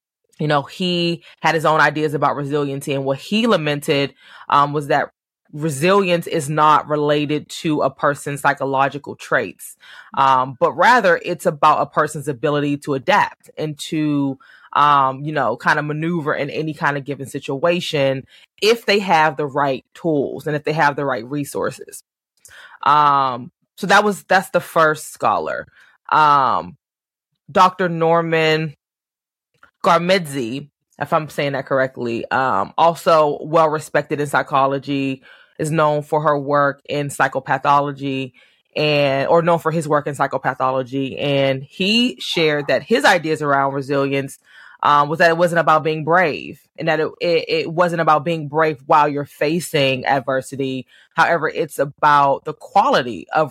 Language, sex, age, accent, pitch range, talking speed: English, female, 20-39, American, 140-165 Hz, 150 wpm